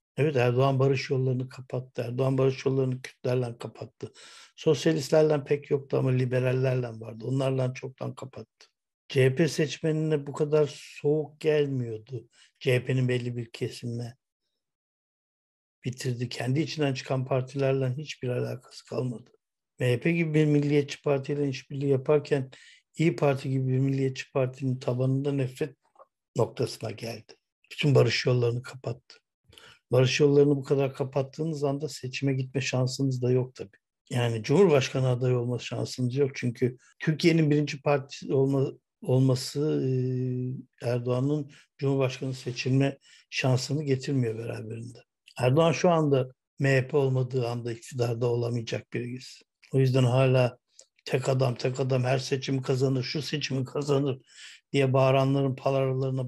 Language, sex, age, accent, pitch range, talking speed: Turkish, male, 60-79, native, 125-145 Hz, 120 wpm